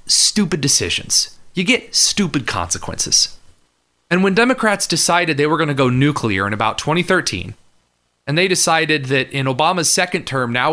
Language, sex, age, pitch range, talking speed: English, male, 30-49, 120-170 Hz, 155 wpm